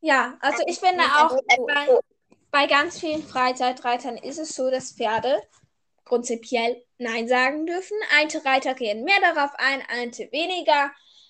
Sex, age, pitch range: female, 10-29, 245-315 Hz